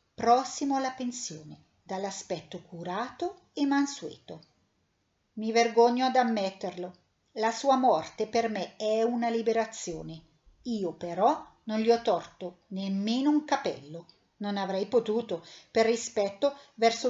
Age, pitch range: 50-69, 185-250 Hz